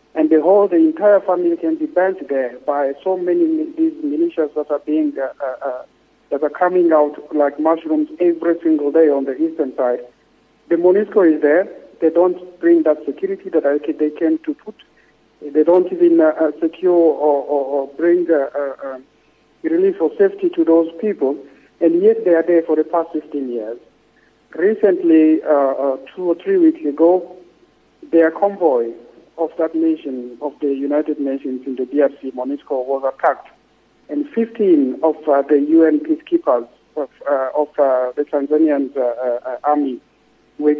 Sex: male